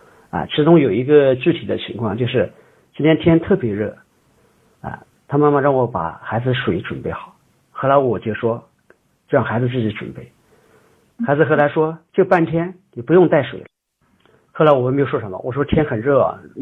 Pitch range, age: 120-150 Hz, 50-69